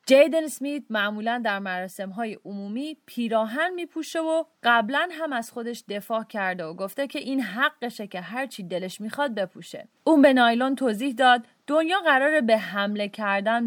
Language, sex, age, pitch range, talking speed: English, female, 30-49, 205-285 Hz, 165 wpm